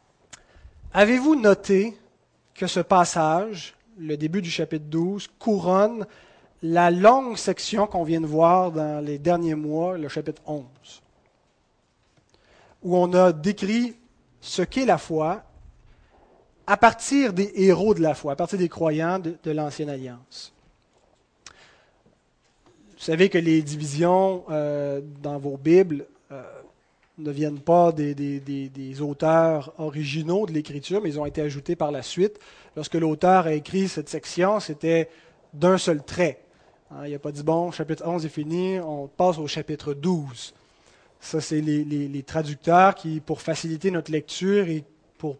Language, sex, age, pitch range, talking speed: French, male, 30-49, 150-185 Hz, 145 wpm